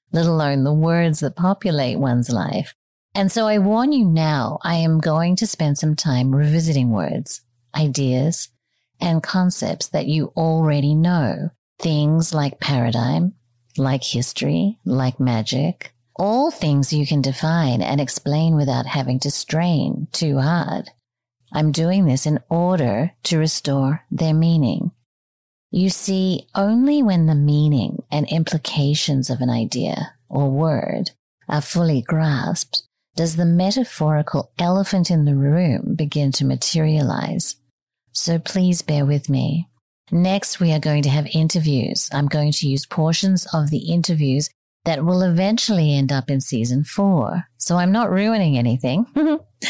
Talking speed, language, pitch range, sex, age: 140 wpm, English, 140-175 Hz, female, 40-59